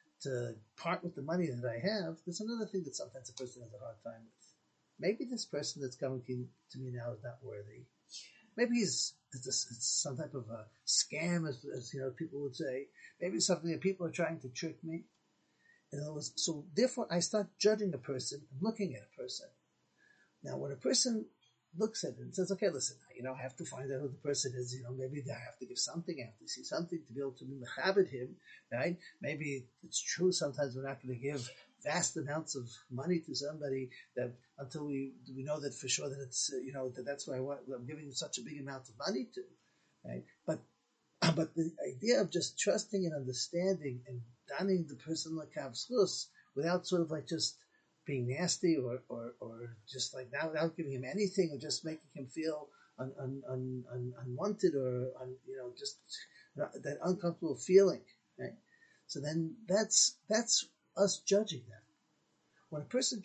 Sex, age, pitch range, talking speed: male, 50-69, 130-180 Hz, 205 wpm